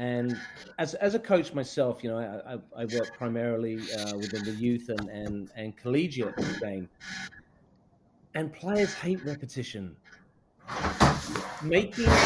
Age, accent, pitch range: 40-59, British, 125-185 Hz